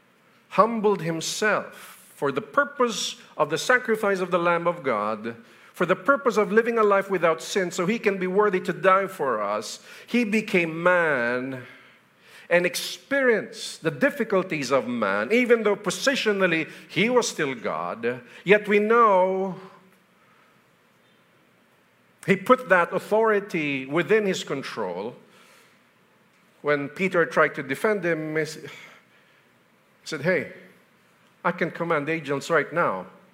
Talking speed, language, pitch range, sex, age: 135 wpm, English, 155-215 Hz, male, 50-69